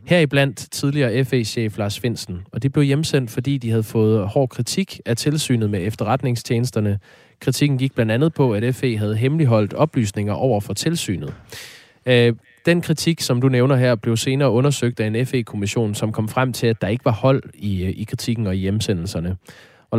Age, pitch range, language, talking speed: 20-39, 105-135 Hz, Danish, 185 wpm